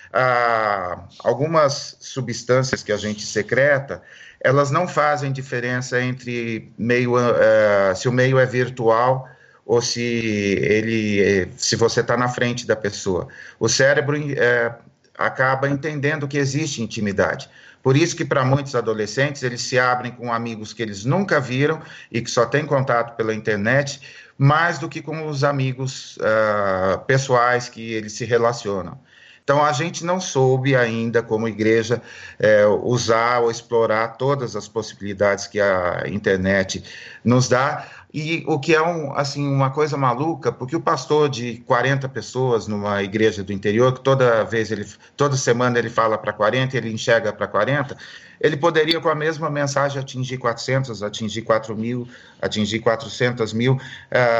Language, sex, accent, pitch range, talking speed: Portuguese, male, Brazilian, 110-140 Hz, 145 wpm